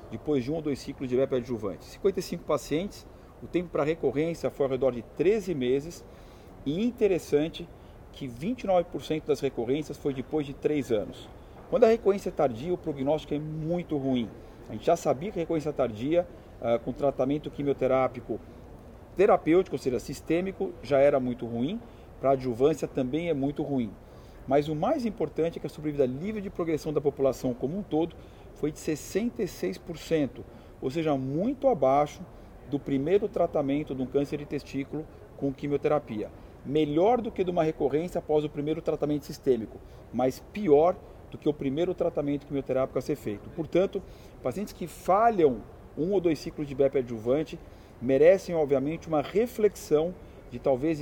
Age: 40-59